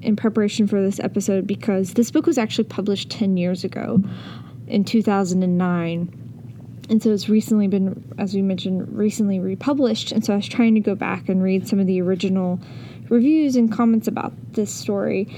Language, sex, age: English, female, 20-39